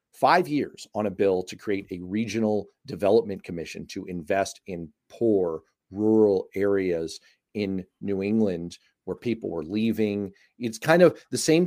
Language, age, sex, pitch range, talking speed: English, 40-59, male, 95-110 Hz, 150 wpm